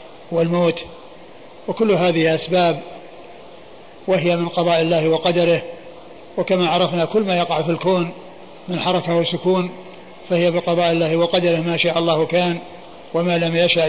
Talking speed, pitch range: 130 wpm, 170-185 Hz